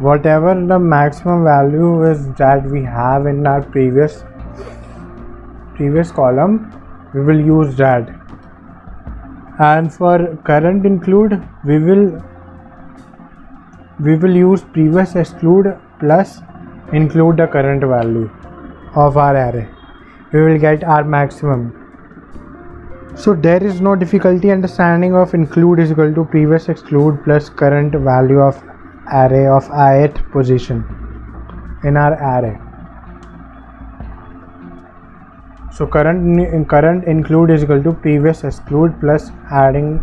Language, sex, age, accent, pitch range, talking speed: English, male, 20-39, Indian, 130-170 Hz, 115 wpm